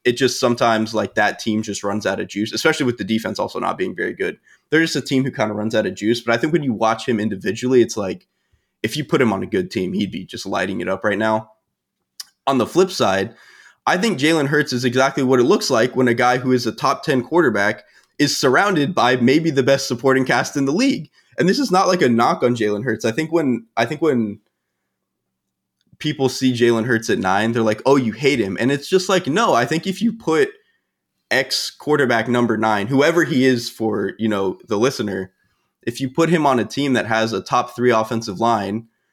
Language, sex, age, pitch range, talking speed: English, male, 20-39, 110-150 Hz, 240 wpm